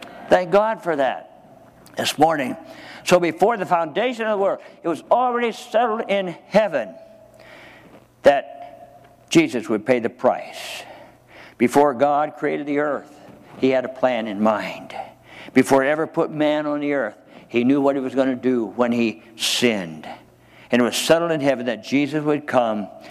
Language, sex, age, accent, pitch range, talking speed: English, male, 60-79, American, 125-175 Hz, 170 wpm